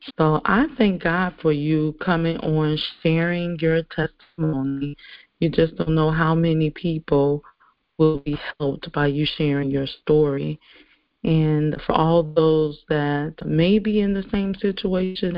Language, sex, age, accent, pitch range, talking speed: English, female, 40-59, American, 155-180 Hz, 145 wpm